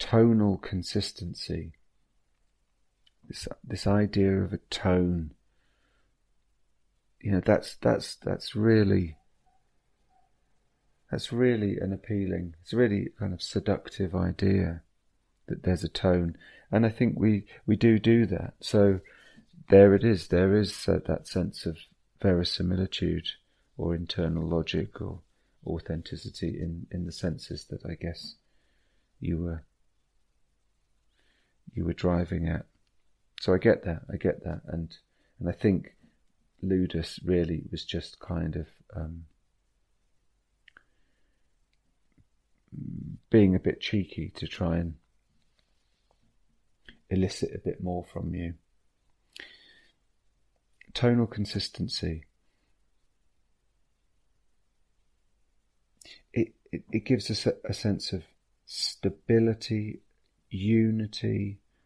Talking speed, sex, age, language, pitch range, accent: 105 wpm, male, 40-59, English, 85-100 Hz, British